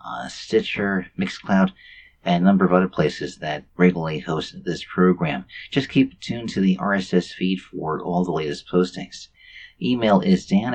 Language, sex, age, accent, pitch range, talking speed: English, male, 40-59, American, 85-110 Hz, 160 wpm